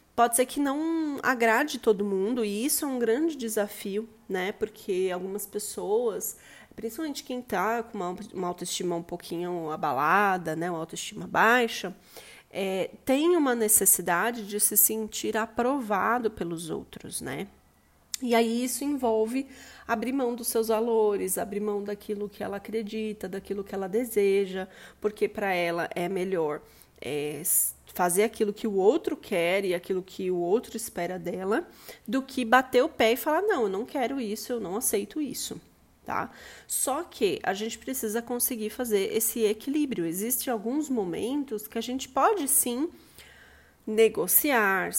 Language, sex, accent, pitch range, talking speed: Portuguese, female, Brazilian, 190-245 Hz, 150 wpm